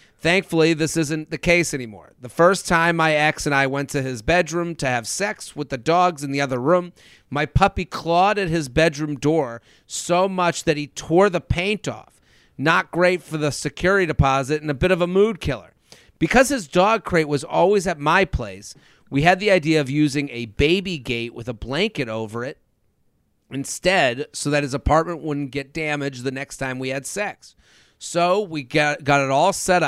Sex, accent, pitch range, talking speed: male, American, 140-180 Hz, 200 wpm